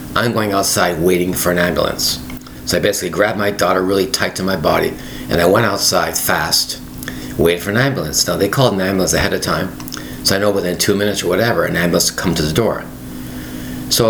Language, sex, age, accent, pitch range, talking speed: English, male, 50-69, American, 65-100 Hz, 215 wpm